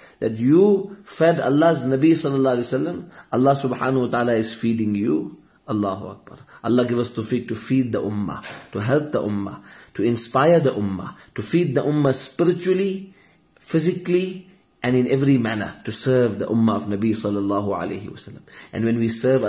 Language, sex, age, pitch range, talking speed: English, male, 30-49, 110-150 Hz, 170 wpm